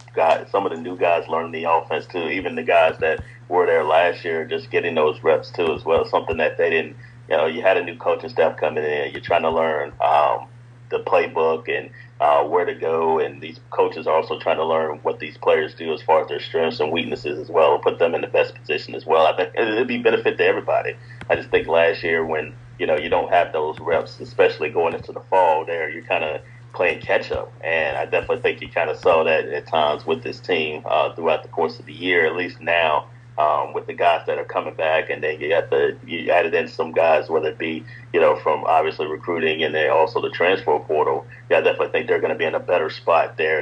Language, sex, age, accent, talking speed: English, male, 30-49, American, 250 wpm